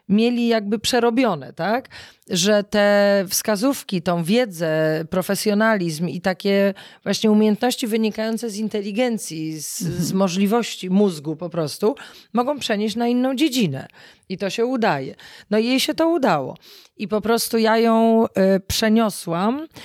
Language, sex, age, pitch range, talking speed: Polish, female, 40-59, 185-225 Hz, 130 wpm